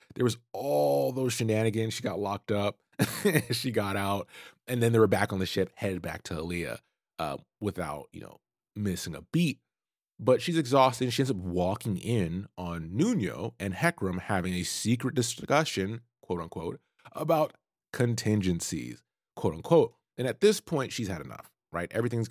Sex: male